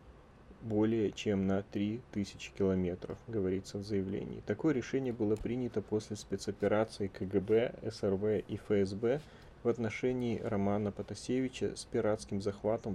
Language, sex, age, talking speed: Russian, male, 30-49, 115 wpm